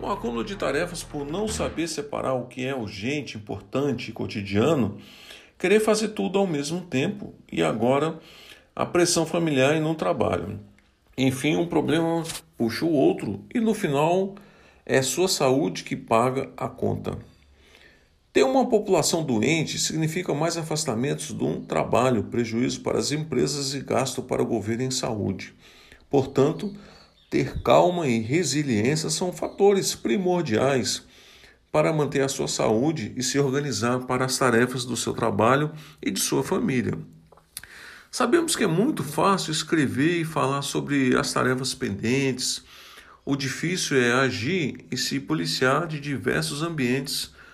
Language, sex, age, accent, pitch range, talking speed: Portuguese, male, 50-69, Brazilian, 125-170 Hz, 145 wpm